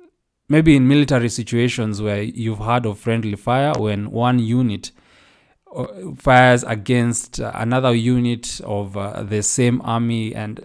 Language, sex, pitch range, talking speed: English, male, 110-130 Hz, 130 wpm